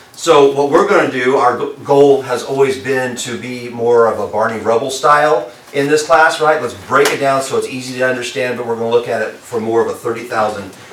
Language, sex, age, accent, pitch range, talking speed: English, male, 40-59, American, 115-145 Hz, 240 wpm